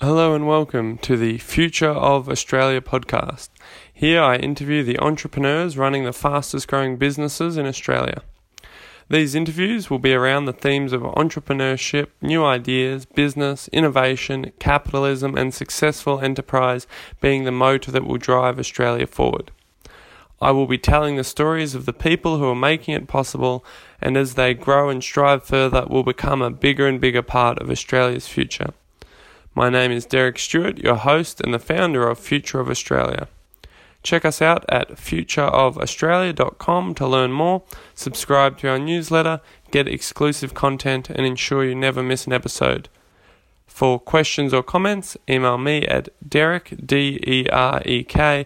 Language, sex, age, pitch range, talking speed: English, male, 20-39, 125-150 Hz, 150 wpm